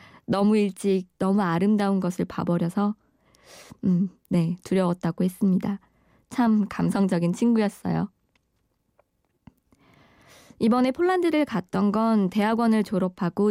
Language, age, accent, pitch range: Korean, 20-39, native, 180-230 Hz